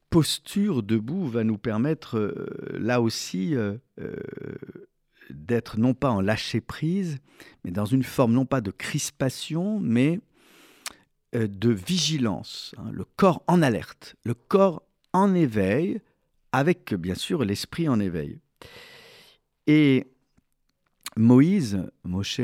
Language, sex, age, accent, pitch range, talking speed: French, male, 50-69, French, 110-150 Hz, 120 wpm